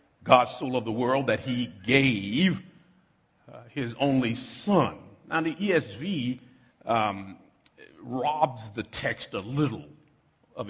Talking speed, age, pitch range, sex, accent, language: 125 wpm, 50-69, 115-155 Hz, male, American, English